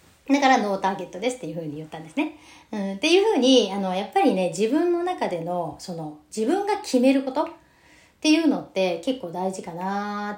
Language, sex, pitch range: Japanese, female, 185-275 Hz